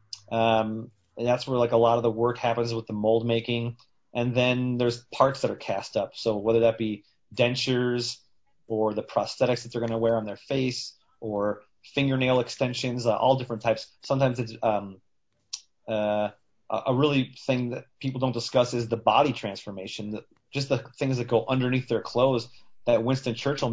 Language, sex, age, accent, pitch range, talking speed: English, male, 30-49, American, 105-125 Hz, 180 wpm